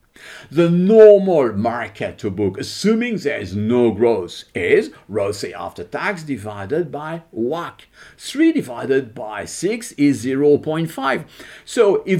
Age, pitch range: 50-69, 110-180 Hz